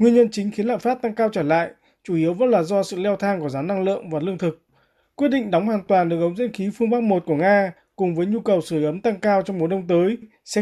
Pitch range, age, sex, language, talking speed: 155-205 Hz, 20-39, male, Vietnamese, 295 wpm